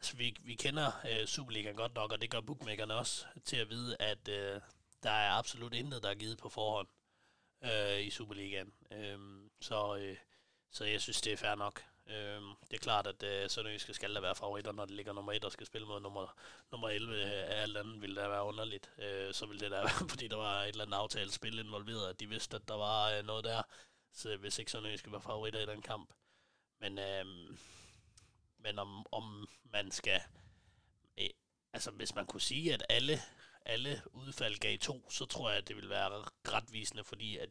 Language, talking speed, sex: Danish, 215 wpm, male